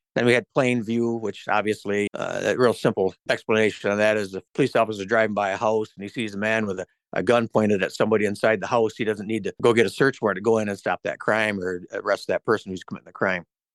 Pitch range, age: 105-120 Hz, 60-79